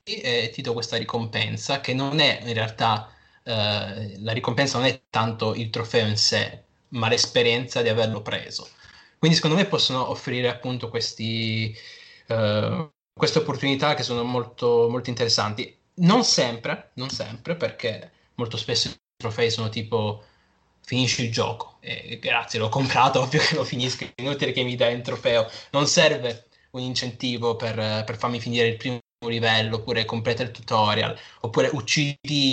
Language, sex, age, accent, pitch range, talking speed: Italian, male, 20-39, native, 110-125 Hz, 155 wpm